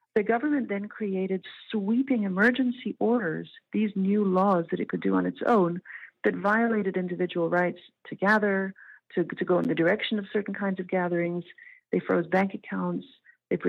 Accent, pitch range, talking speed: American, 175-225 Hz, 170 wpm